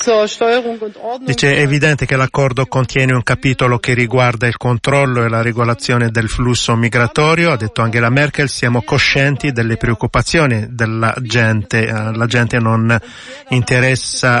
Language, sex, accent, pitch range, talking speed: Italian, male, native, 125-155 Hz, 135 wpm